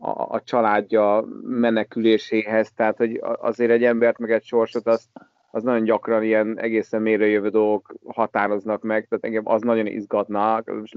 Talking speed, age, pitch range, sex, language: 155 wpm, 30-49, 110-120 Hz, male, Hungarian